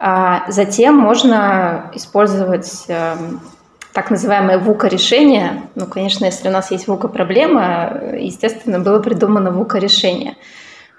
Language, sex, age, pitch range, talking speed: Russian, female, 20-39, 180-225 Hz, 110 wpm